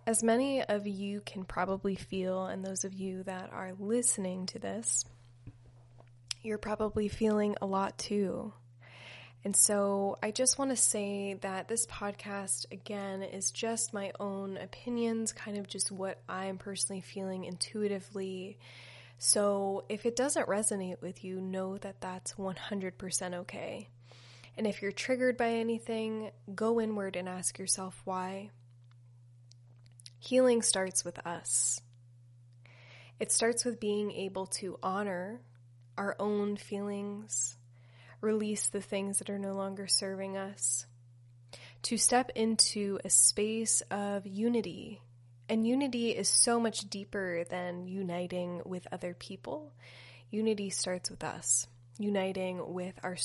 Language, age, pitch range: English, 20-39, 125-205 Hz